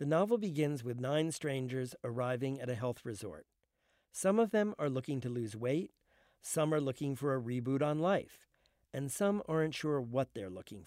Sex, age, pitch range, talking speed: male, 50-69, 125-155 Hz, 190 wpm